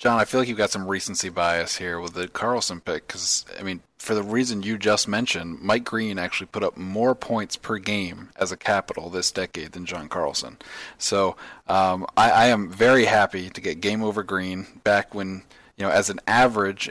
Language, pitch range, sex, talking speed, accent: English, 95-105 Hz, male, 210 wpm, American